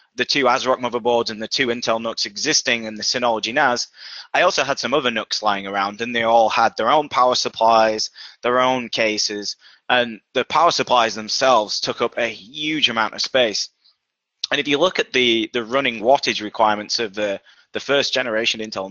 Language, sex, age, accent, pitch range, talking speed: English, male, 20-39, British, 110-130 Hz, 195 wpm